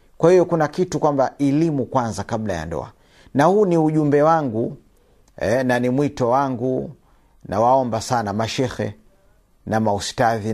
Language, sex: Swahili, male